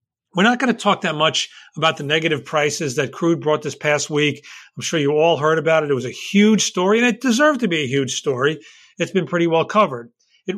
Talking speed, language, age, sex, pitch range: 245 wpm, English, 40-59, male, 145-185 Hz